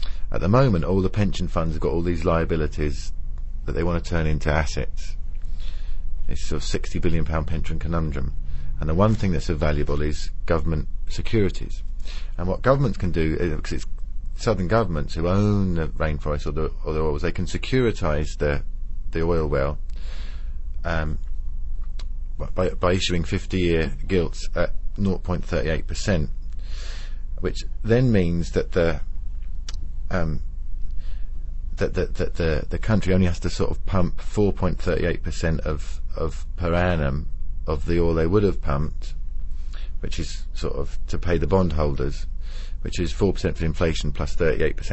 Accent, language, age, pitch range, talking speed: British, English, 30-49, 70-90 Hz, 165 wpm